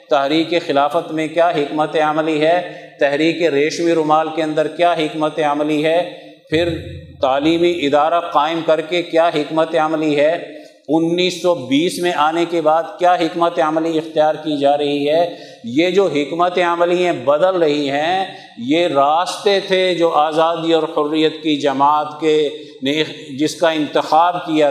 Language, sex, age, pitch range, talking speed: Urdu, male, 50-69, 145-170 Hz, 150 wpm